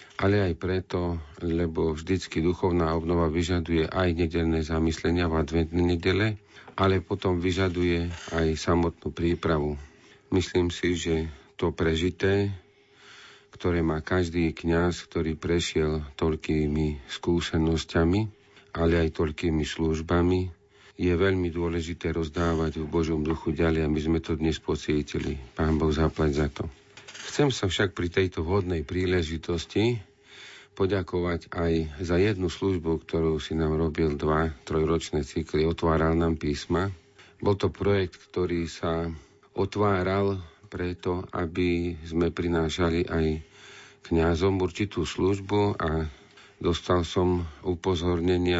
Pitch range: 80-95 Hz